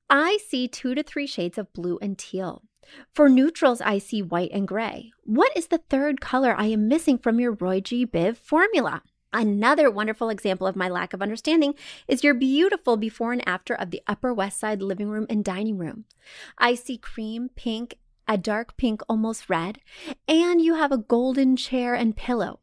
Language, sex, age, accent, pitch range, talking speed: English, female, 30-49, American, 205-280 Hz, 190 wpm